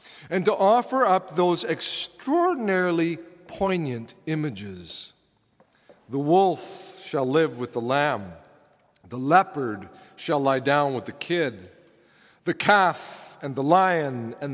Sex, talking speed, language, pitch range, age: male, 120 wpm, English, 140-185 Hz, 50-69